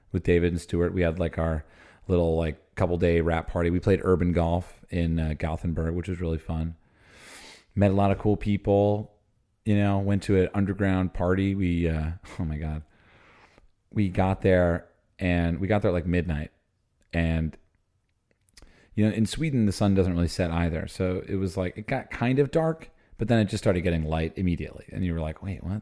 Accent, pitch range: American, 85-105 Hz